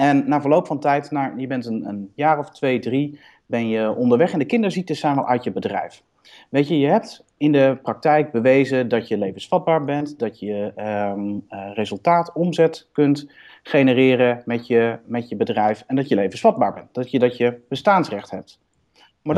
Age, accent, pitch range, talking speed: 40-59, Dutch, 125-175 Hz, 190 wpm